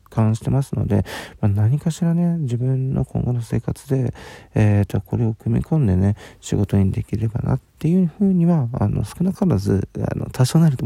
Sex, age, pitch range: male, 40-59, 105-125 Hz